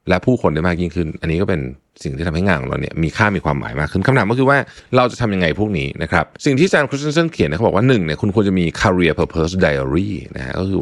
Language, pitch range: Thai, 85-115 Hz